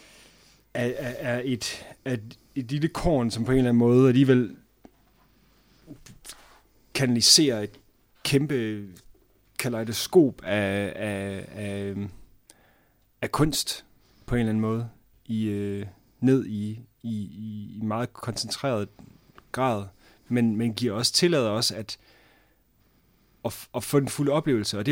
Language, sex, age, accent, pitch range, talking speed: Danish, male, 30-49, native, 105-130 Hz, 120 wpm